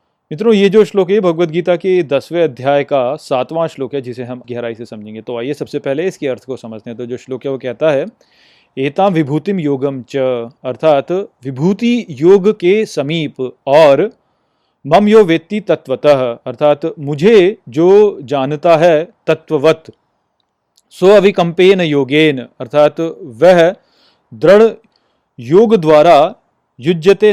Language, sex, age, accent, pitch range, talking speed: Hindi, male, 30-49, native, 140-185 Hz, 140 wpm